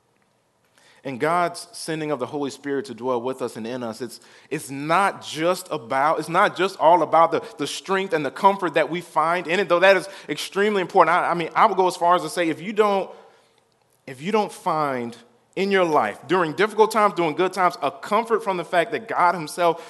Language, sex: English, male